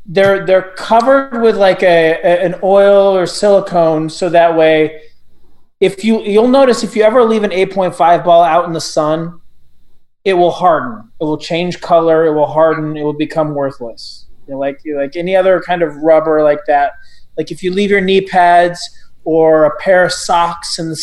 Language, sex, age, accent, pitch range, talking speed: English, male, 30-49, American, 150-180 Hz, 205 wpm